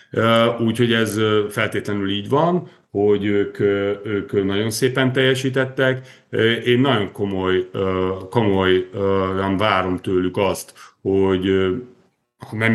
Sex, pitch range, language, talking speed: male, 95-120 Hz, Hungarian, 95 wpm